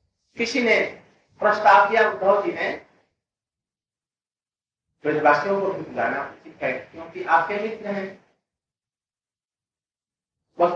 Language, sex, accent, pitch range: Hindi, male, native, 190-225 Hz